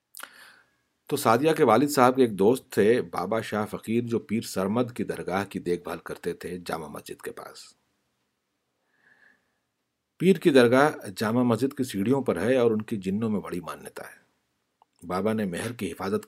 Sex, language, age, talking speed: male, Urdu, 60-79, 175 wpm